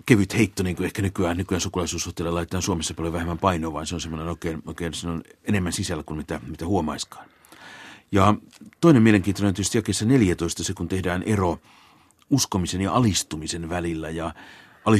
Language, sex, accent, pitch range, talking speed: Finnish, male, native, 85-100 Hz, 170 wpm